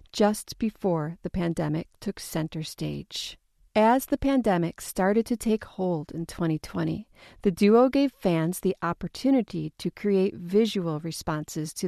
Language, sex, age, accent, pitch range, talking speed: English, female, 40-59, American, 170-215 Hz, 135 wpm